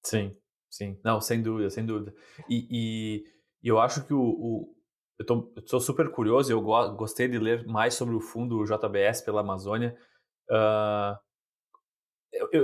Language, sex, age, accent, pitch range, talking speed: Portuguese, male, 20-39, Brazilian, 110-145 Hz, 160 wpm